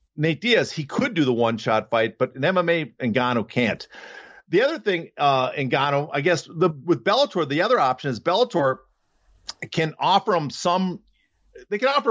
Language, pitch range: English, 130-175 Hz